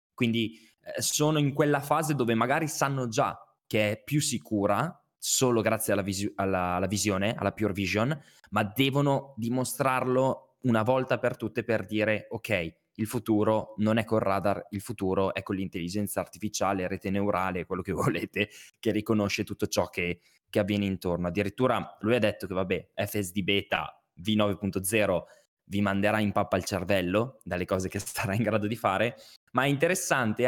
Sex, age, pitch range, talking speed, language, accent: male, 20-39, 100-150 Hz, 165 wpm, Italian, native